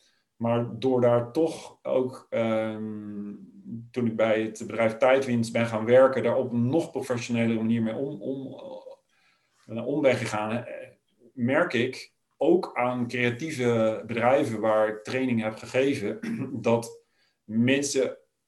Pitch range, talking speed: 110-135 Hz, 130 wpm